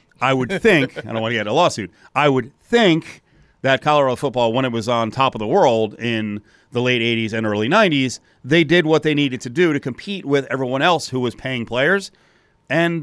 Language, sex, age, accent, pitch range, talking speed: English, male, 40-59, American, 120-195 Hz, 220 wpm